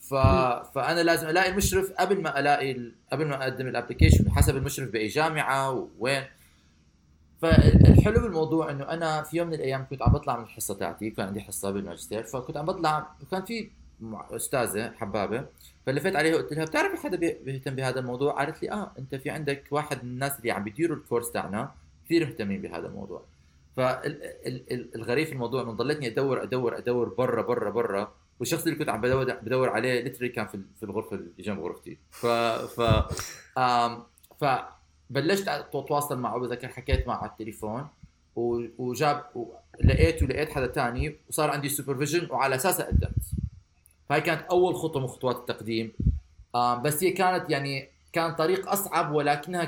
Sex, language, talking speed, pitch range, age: male, Arabic, 150 wpm, 115-150 Hz, 30-49